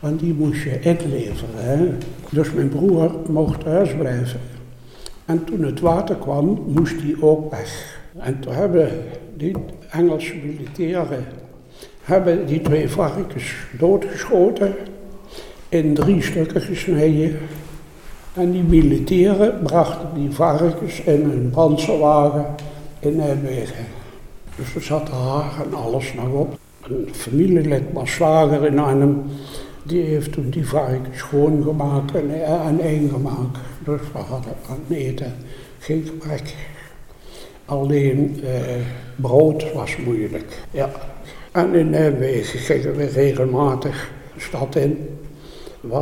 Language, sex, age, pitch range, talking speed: Dutch, male, 60-79, 135-165 Hz, 125 wpm